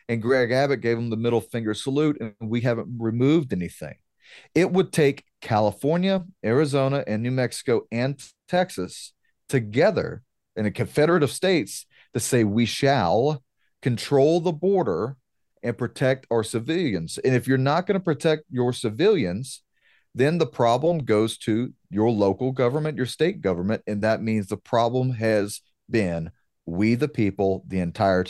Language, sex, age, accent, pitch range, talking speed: English, male, 40-59, American, 105-135 Hz, 155 wpm